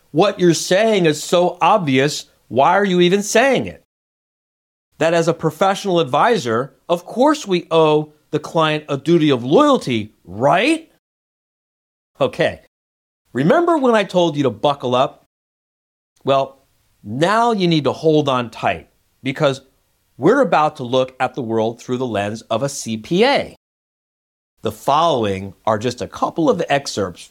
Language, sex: English, male